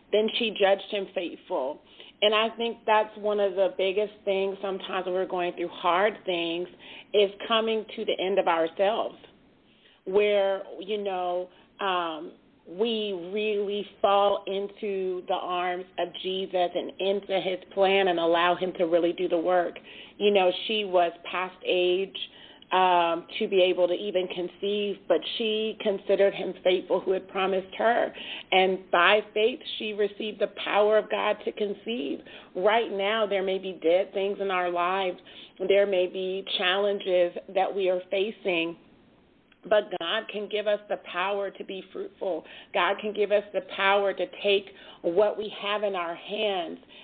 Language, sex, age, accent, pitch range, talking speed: English, female, 40-59, American, 185-205 Hz, 160 wpm